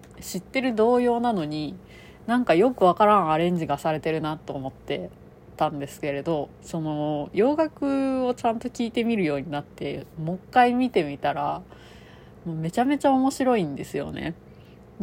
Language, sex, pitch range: Japanese, female, 150-220 Hz